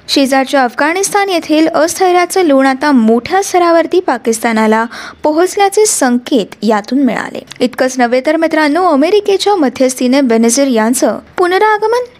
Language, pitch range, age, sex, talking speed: Marathi, 250-350 Hz, 20-39, female, 105 wpm